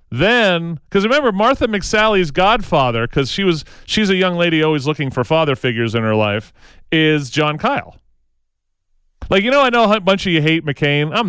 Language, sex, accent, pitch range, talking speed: English, male, American, 120-160 Hz, 185 wpm